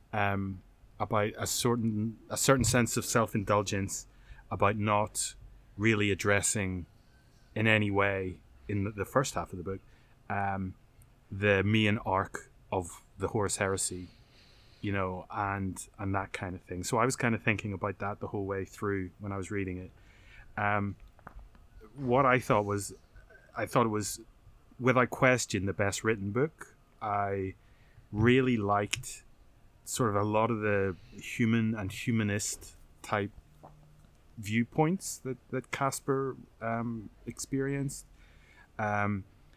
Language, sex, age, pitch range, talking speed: English, male, 30-49, 100-115 Hz, 140 wpm